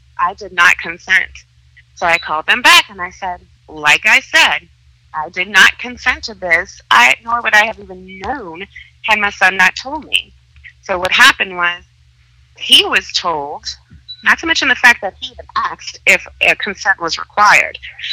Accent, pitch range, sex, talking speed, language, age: American, 155-215 Hz, female, 180 wpm, English, 30-49